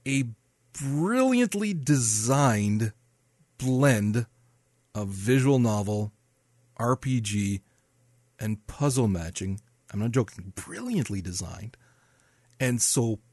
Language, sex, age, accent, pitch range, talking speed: English, male, 40-59, American, 110-135 Hz, 80 wpm